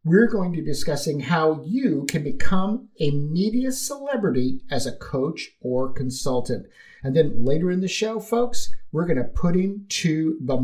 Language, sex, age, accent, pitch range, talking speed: English, male, 50-69, American, 140-215 Hz, 175 wpm